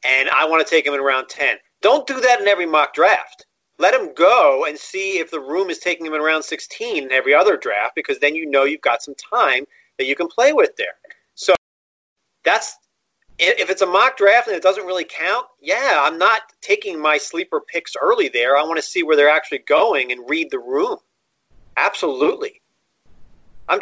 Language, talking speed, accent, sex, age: English, 210 wpm, American, male, 40-59